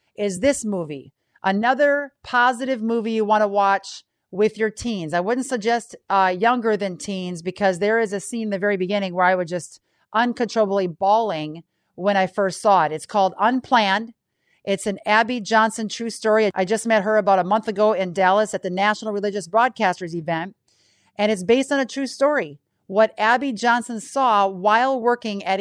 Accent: American